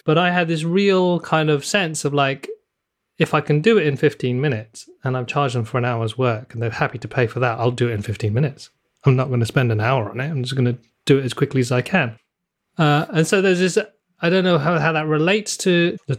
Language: English